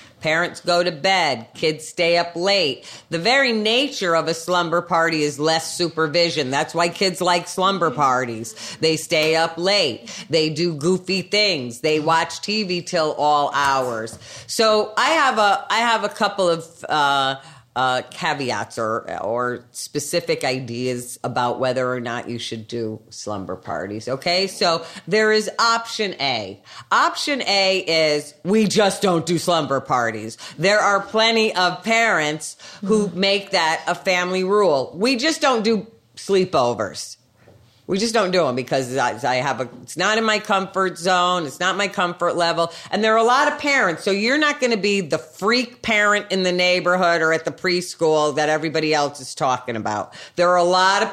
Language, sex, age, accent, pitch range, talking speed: English, female, 40-59, American, 135-195 Hz, 170 wpm